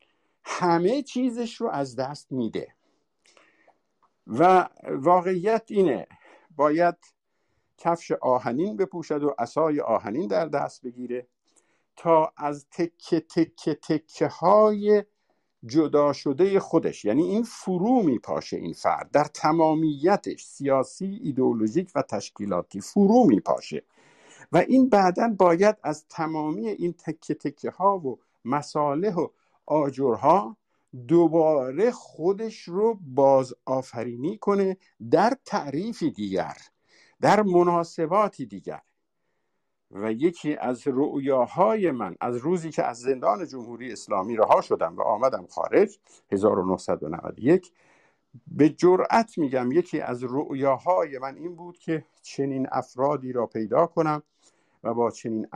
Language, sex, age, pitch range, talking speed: Persian, male, 50-69, 130-180 Hz, 110 wpm